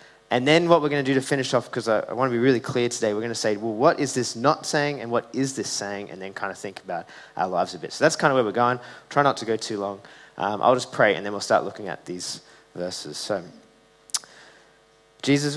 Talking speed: 270 wpm